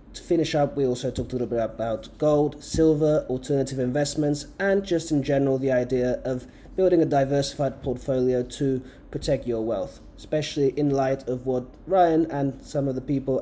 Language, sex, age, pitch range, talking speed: English, male, 30-49, 125-145 Hz, 180 wpm